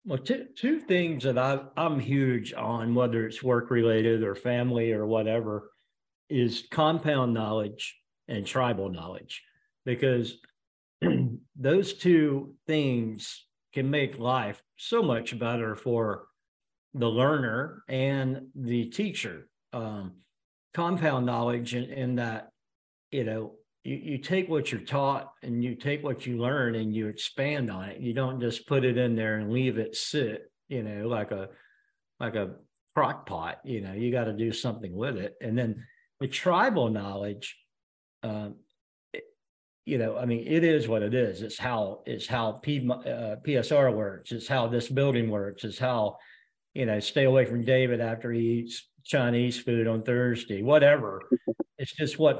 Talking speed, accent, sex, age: 160 wpm, American, male, 50-69